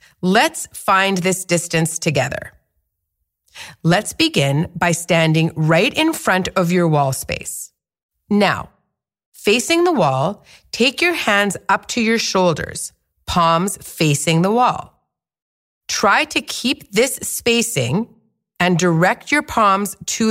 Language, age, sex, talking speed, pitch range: English, 40-59, female, 120 wpm, 160-220 Hz